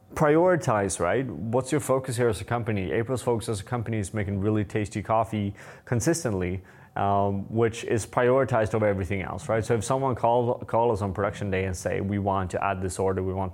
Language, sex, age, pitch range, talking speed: English, male, 20-39, 100-120 Hz, 210 wpm